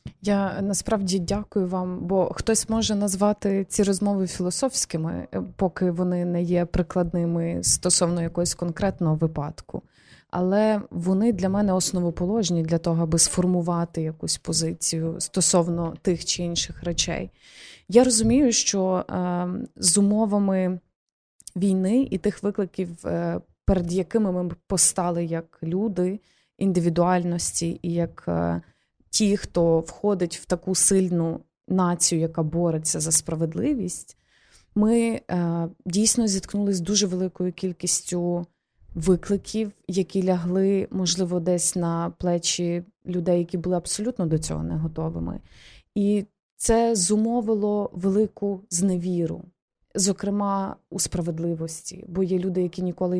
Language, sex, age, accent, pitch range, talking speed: Ukrainian, female, 20-39, native, 170-200 Hz, 115 wpm